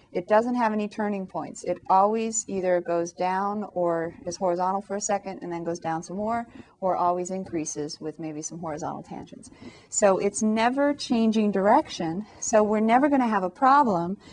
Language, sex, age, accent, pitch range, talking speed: English, female, 30-49, American, 180-230 Hz, 185 wpm